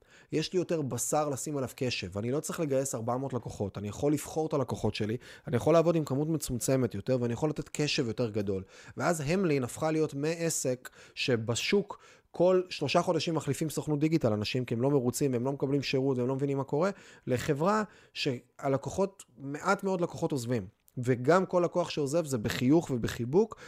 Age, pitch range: 20-39, 120-155 Hz